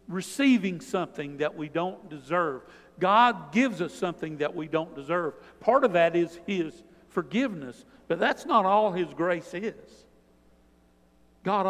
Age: 60-79